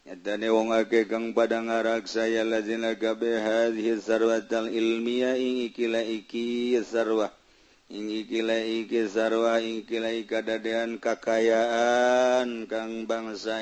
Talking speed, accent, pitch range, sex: 100 wpm, native, 110-115 Hz, male